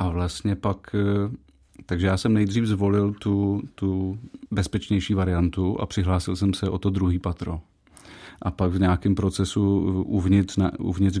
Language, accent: Czech, native